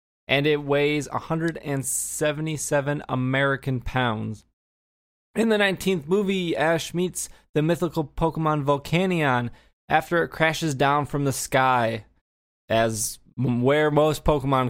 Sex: male